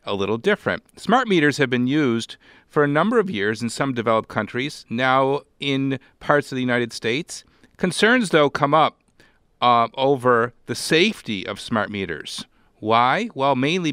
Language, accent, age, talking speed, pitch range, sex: English, American, 50-69, 165 wpm, 120-155 Hz, male